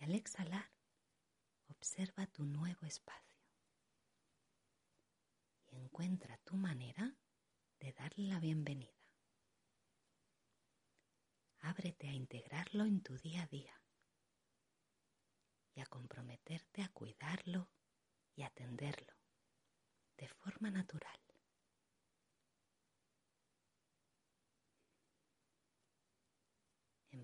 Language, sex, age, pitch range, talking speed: Spanish, female, 30-49, 130-190 Hz, 75 wpm